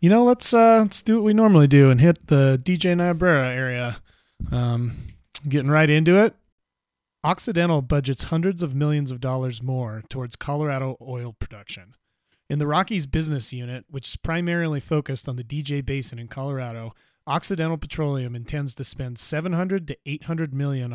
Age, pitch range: 30-49, 125-160 Hz